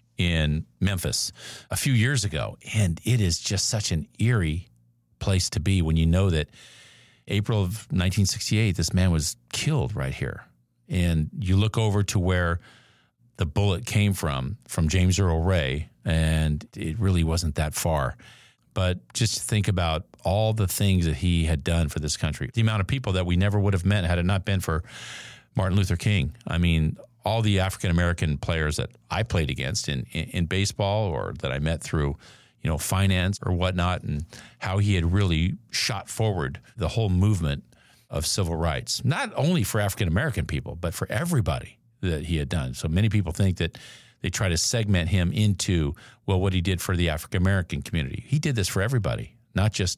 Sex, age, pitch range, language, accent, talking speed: male, 50-69, 85-105 Hz, English, American, 185 wpm